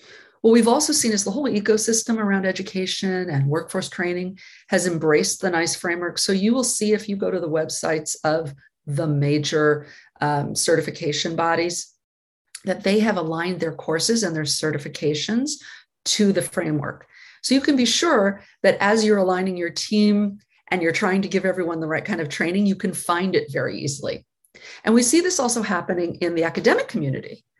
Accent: American